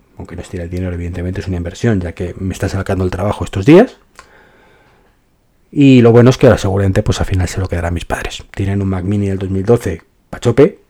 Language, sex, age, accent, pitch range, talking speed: Spanish, male, 30-49, Spanish, 95-115 Hz, 220 wpm